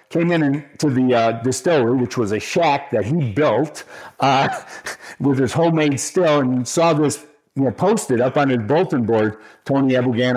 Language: English